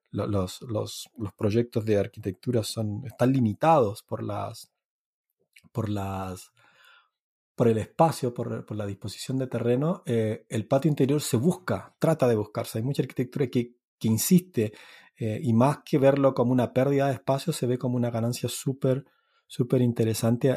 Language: Spanish